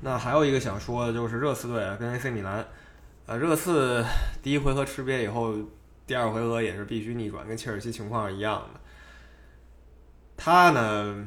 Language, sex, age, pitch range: Chinese, male, 20-39, 100-125 Hz